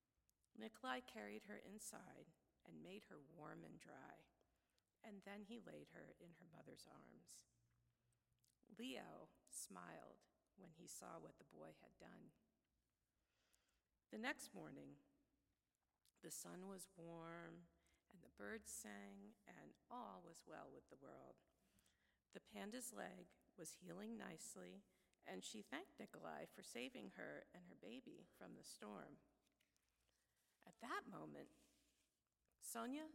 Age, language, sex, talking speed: 50-69, English, female, 125 wpm